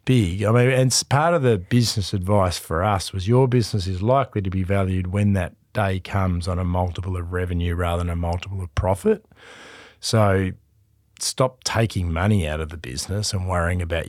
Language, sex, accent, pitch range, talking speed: English, male, Australian, 95-115 Hz, 190 wpm